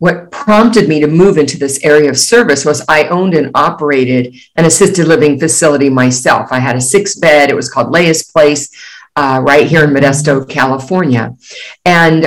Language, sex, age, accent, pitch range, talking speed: English, female, 50-69, American, 145-185 Hz, 180 wpm